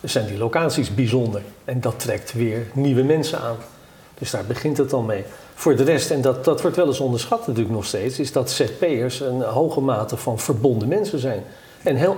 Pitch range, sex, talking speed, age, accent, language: 120-145 Hz, male, 210 wpm, 50-69, Dutch, Dutch